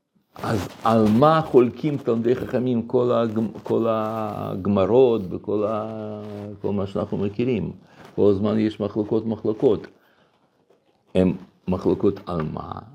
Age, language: 60-79, Hebrew